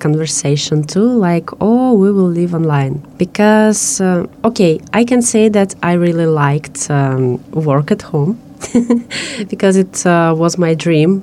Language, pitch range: English, 160-205 Hz